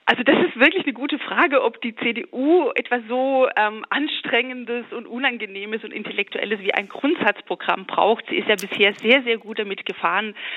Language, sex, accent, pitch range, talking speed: German, female, German, 195-245 Hz, 175 wpm